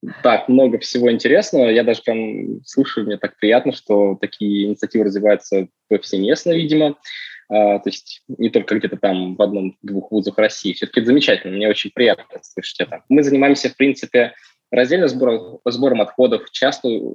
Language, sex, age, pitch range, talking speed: Russian, male, 20-39, 100-120 Hz, 160 wpm